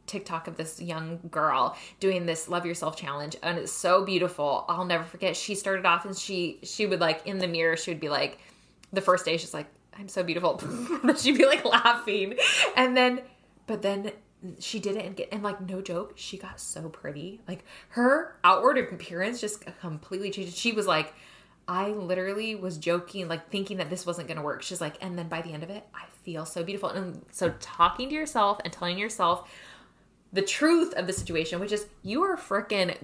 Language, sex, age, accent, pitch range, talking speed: English, female, 20-39, American, 170-210 Hz, 205 wpm